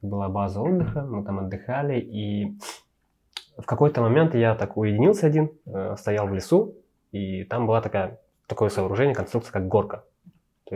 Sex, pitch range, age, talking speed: male, 95-115 Hz, 20-39, 150 wpm